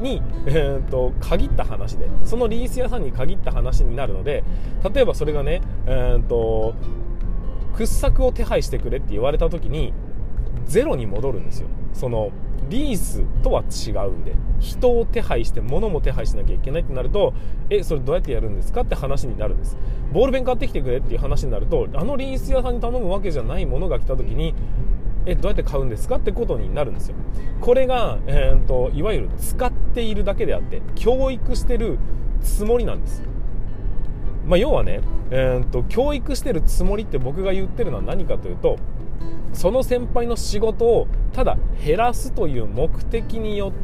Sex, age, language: male, 20-39, Japanese